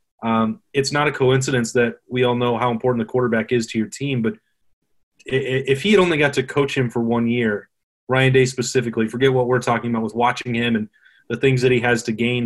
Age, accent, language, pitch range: 30-49, American, English, 120-135 Hz